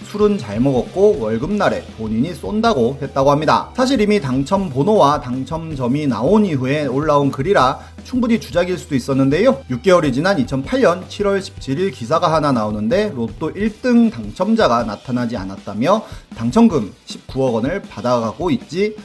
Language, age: Korean, 30-49